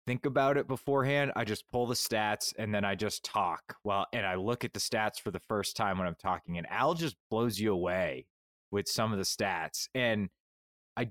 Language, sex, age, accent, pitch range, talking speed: English, male, 20-39, American, 100-135 Hz, 220 wpm